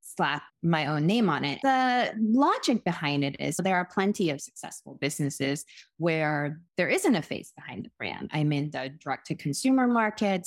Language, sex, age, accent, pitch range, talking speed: English, female, 20-39, American, 150-200 Hz, 170 wpm